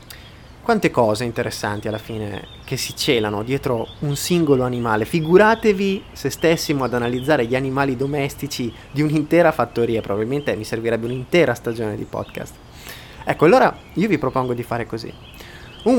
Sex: male